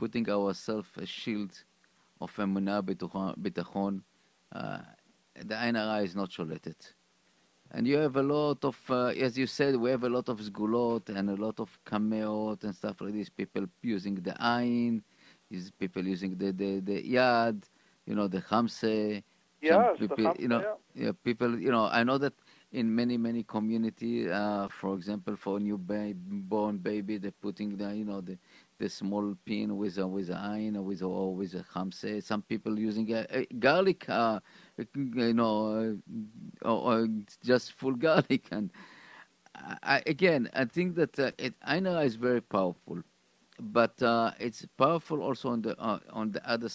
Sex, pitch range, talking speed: male, 100-120 Hz, 165 wpm